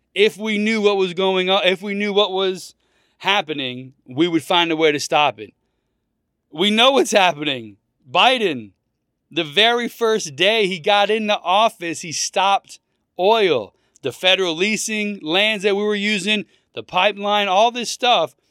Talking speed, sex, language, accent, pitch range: 165 wpm, male, English, American, 155-215 Hz